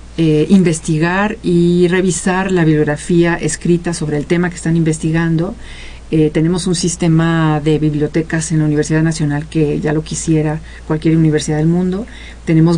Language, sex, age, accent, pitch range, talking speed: Spanish, female, 40-59, Mexican, 155-180 Hz, 150 wpm